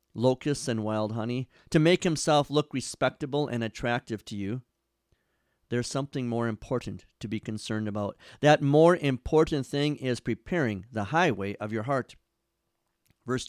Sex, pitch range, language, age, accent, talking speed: male, 110-150 Hz, English, 50-69, American, 145 wpm